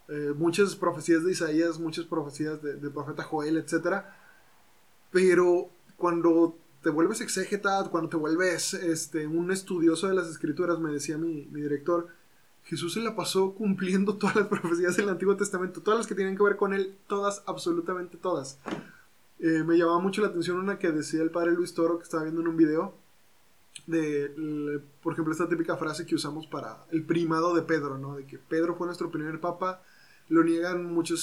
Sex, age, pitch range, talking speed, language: male, 20-39, 160-185 Hz, 185 wpm, Spanish